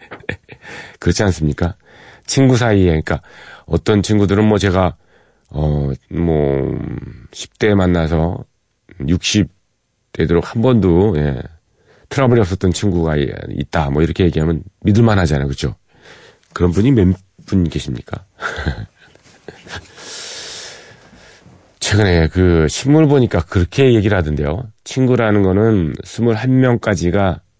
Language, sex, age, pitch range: Korean, male, 40-59, 80-105 Hz